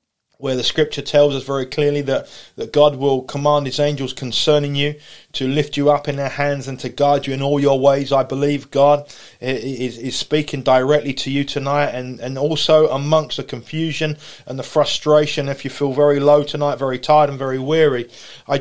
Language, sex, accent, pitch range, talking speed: English, male, British, 135-150 Hz, 200 wpm